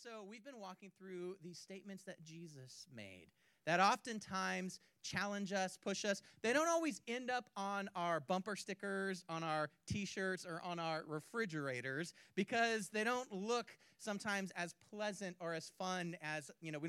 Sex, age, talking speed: male, 30-49, 165 wpm